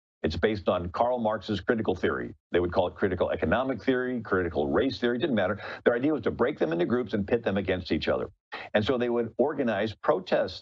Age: 50-69